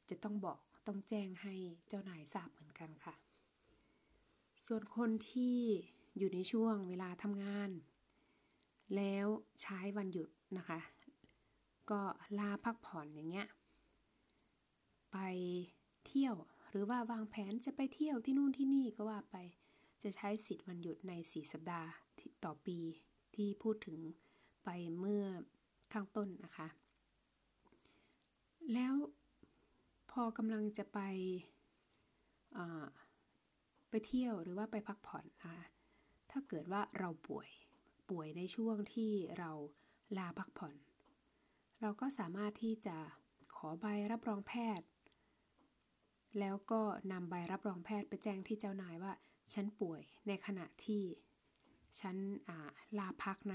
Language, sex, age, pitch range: Thai, female, 20-39, 175-215 Hz